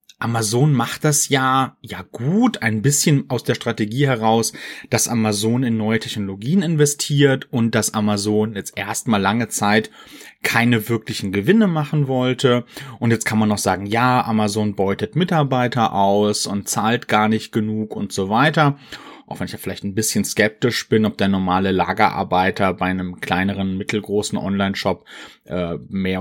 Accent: German